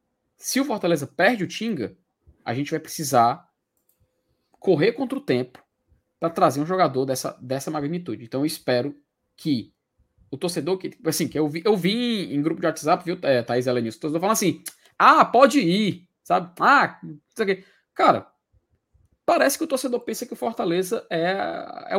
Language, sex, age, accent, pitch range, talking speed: Portuguese, male, 20-39, Brazilian, 150-200 Hz, 175 wpm